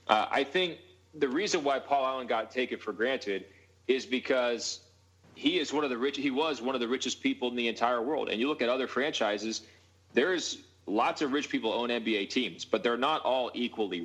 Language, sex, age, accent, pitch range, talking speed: English, male, 30-49, American, 110-130 Hz, 215 wpm